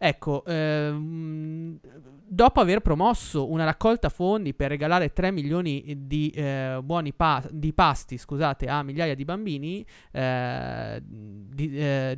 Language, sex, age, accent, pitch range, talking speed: Italian, male, 20-39, native, 135-160 Hz, 130 wpm